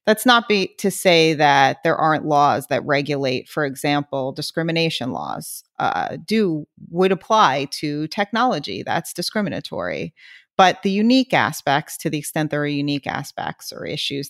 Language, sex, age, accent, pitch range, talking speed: English, female, 40-59, American, 145-170 Hz, 150 wpm